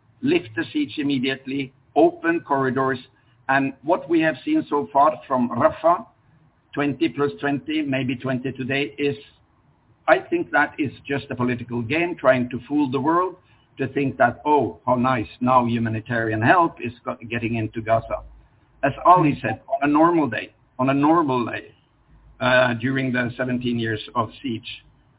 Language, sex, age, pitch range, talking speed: English, male, 60-79, 120-150 Hz, 160 wpm